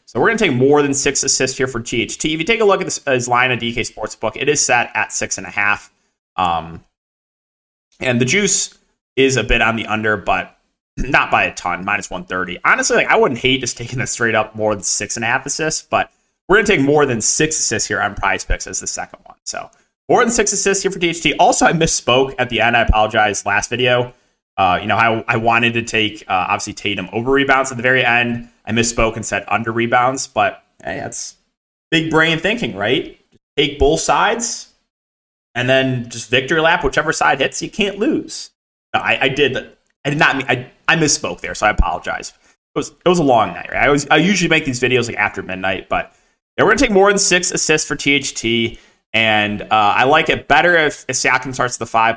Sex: male